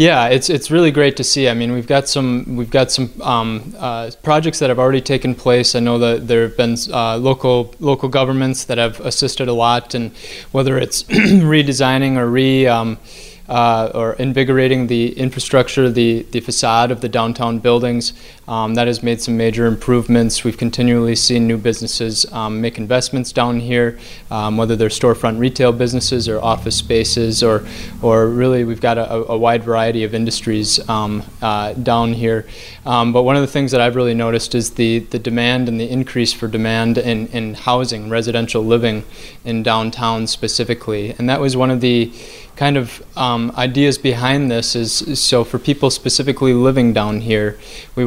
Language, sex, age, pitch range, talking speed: English, male, 20-39, 115-130 Hz, 185 wpm